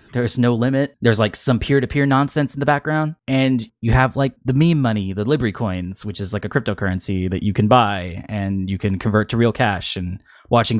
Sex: male